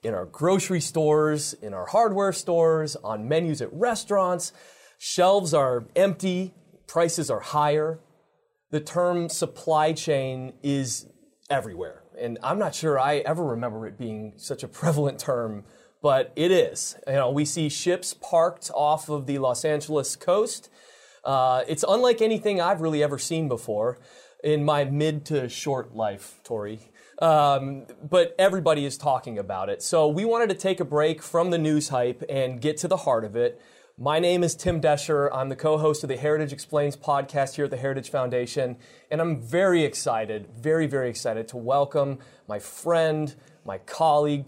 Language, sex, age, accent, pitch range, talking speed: English, male, 30-49, American, 135-170 Hz, 165 wpm